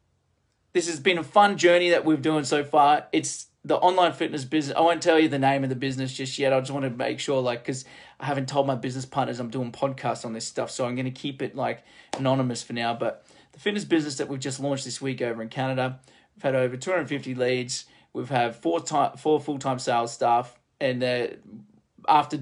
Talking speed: 235 wpm